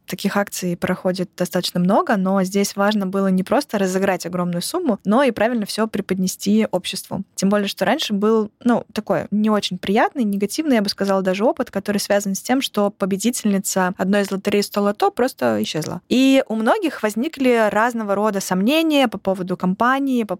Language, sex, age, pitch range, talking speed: Russian, female, 20-39, 195-225 Hz, 175 wpm